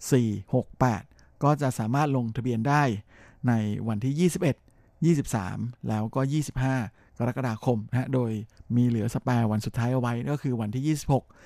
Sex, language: male, Thai